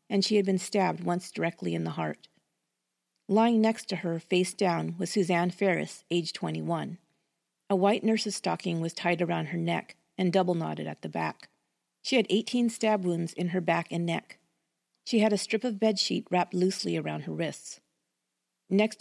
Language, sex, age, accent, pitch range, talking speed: English, female, 50-69, American, 170-210 Hz, 180 wpm